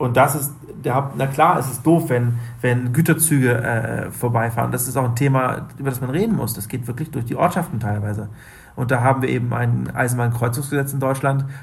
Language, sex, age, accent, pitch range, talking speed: Danish, male, 40-59, German, 120-140 Hz, 205 wpm